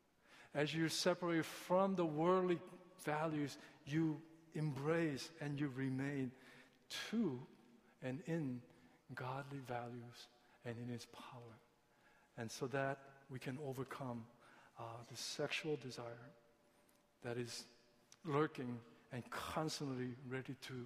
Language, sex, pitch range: Korean, male, 120-160 Hz